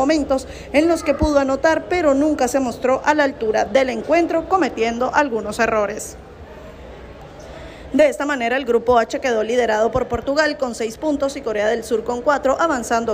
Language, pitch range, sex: Spanish, 235-290 Hz, female